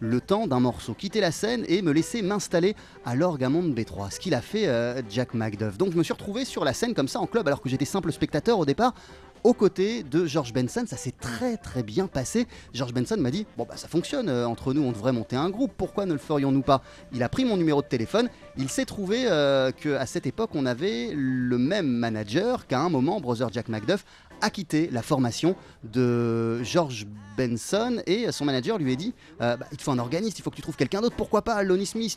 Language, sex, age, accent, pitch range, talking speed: French, male, 30-49, French, 130-200 Hz, 240 wpm